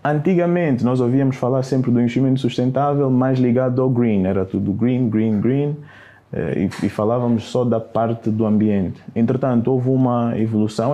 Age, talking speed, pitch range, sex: 20-39, 155 wpm, 110-125 Hz, male